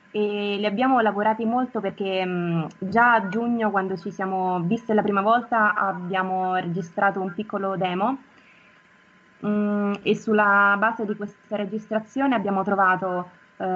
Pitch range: 185-215 Hz